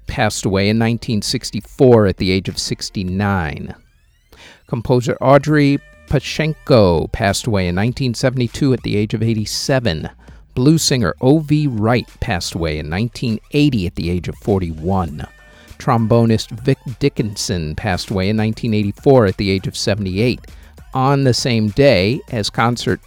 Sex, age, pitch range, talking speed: male, 50-69, 95-135 Hz, 135 wpm